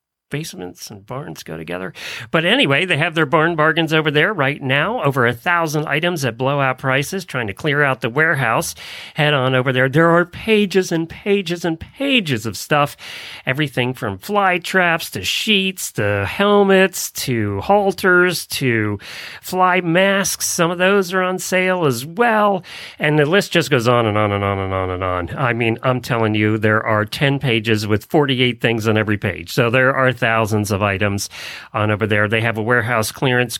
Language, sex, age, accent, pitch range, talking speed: English, male, 40-59, American, 115-170 Hz, 190 wpm